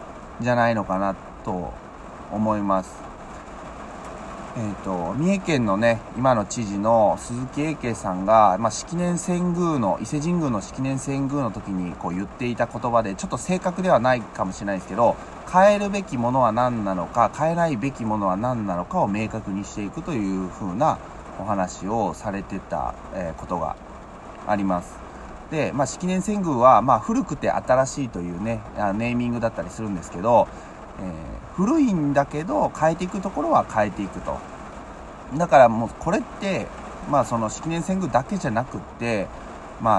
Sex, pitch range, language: male, 100-155 Hz, Japanese